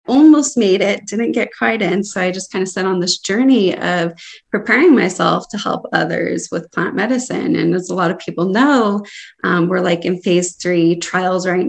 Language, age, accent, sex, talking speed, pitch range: English, 20-39, American, female, 205 wpm, 175-200 Hz